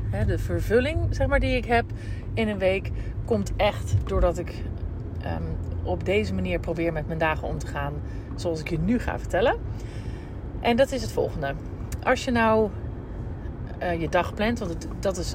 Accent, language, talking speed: Dutch, Dutch, 170 wpm